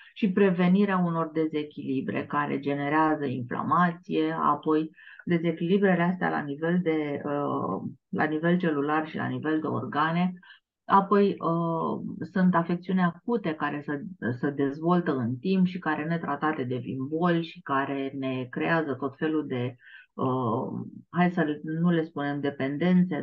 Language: Romanian